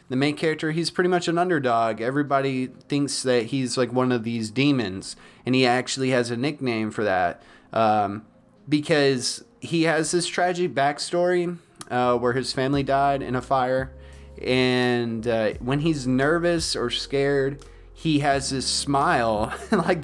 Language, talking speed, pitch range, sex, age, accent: English, 155 wpm, 120-145 Hz, male, 20-39, American